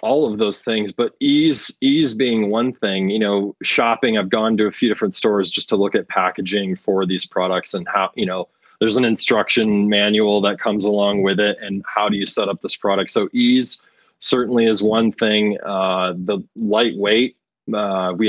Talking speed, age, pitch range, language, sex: 195 wpm, 20-39, 100-120 Hz, English, male